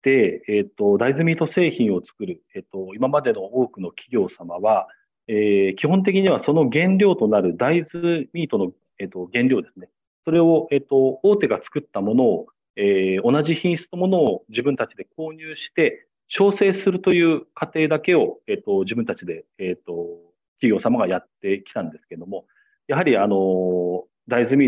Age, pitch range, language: 40-59, 100-170 Hz, Japanese